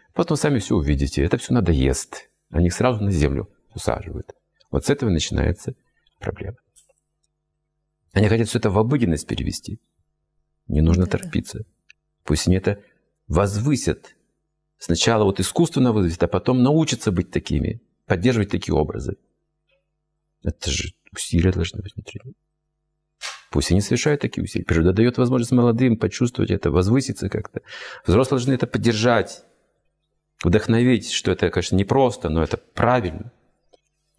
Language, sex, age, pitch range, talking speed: Russian, male, 50-69, 85-130 Hz, 130 wpm